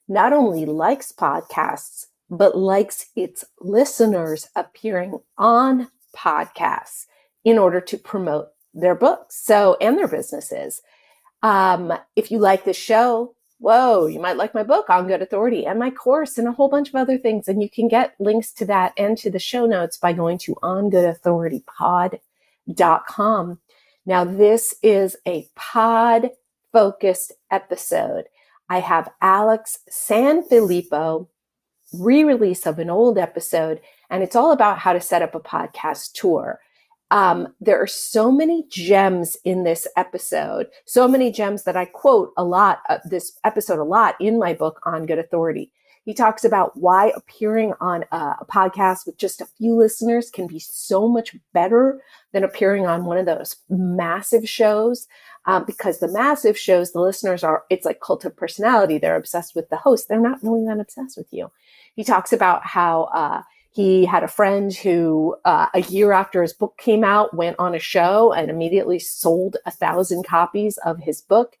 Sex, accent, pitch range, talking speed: female, American, 180-230 Hz, 165 wpm